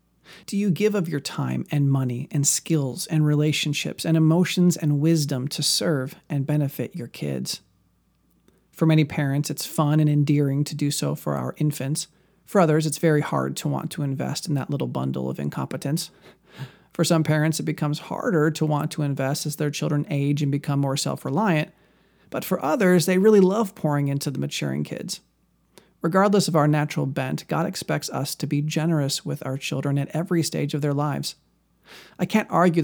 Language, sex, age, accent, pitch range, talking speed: English, male, 40-59, American, 140-165 Hz, 185 wpm